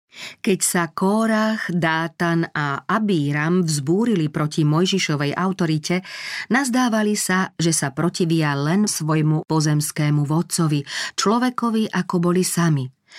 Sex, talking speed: female, 105 wpm